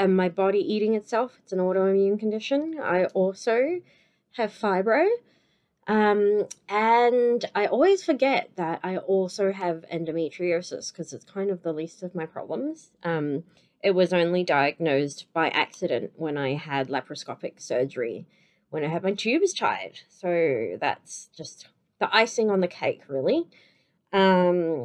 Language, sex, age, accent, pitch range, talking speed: English, female, 20-39, Australian, 175-220 Hz, 145 wpm